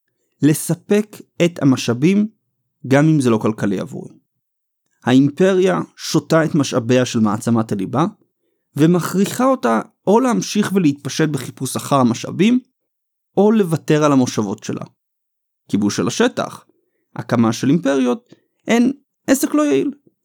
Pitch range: 130-185 Hz